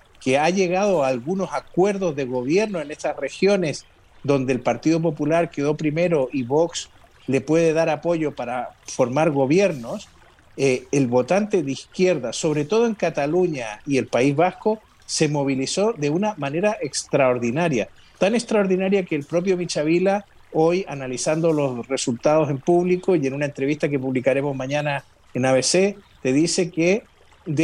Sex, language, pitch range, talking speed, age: male, Spanish, 145-185 Hz, 150 wpm, 50-69